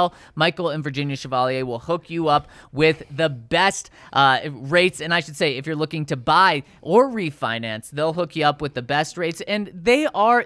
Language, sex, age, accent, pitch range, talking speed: English, male, 20-39, American, 140-185 Hz, 200 wpm